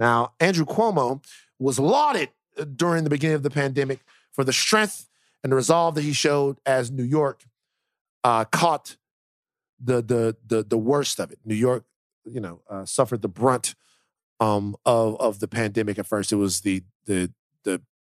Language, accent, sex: English, American, male